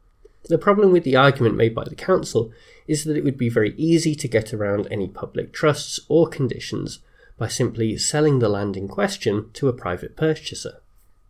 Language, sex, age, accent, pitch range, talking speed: English, male, 30-49, British, 115-165 Hz, 185 wpm